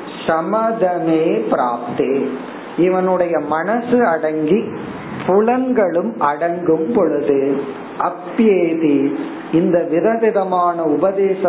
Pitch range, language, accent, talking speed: 155-195 Hz, Tamil, native, 55 wpm